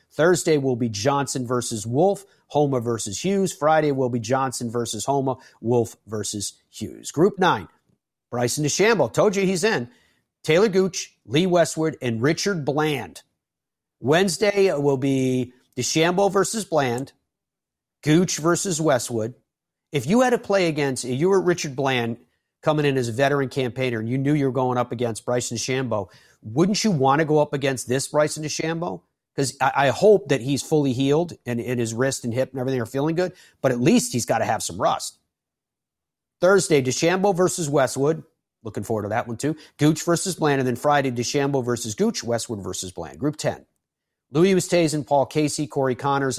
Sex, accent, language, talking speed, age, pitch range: male, American, English, 175 wpm, 40-59, 120-160 Hz